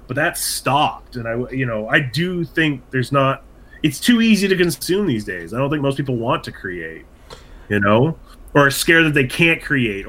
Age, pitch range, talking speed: 30-49, 125-175 Hz, 215 wpm